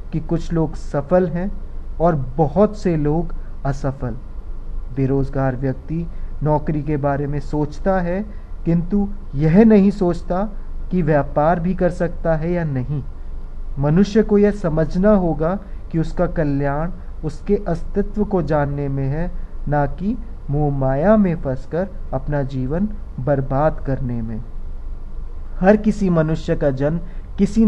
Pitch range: 135-180 Hz